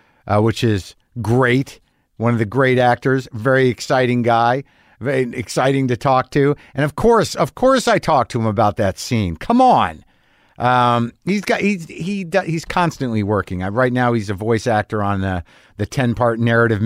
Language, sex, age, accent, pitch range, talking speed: English, male, 50-69, American, 115-150 Hz, 180 wpm